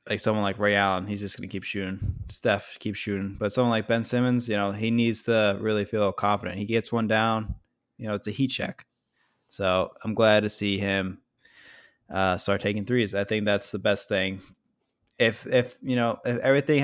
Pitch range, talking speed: 100-120 Hz, 205 wpm